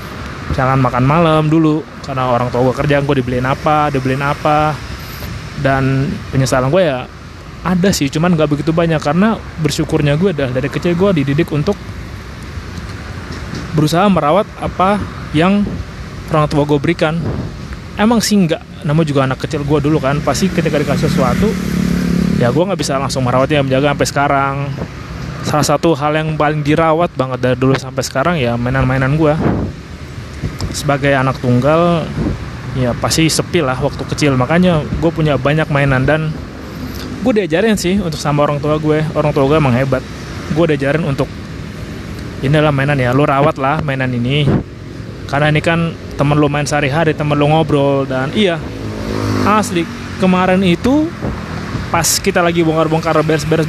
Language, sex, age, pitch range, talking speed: Indonesian, male, 20-39, 135-170 Hz, 155 wpm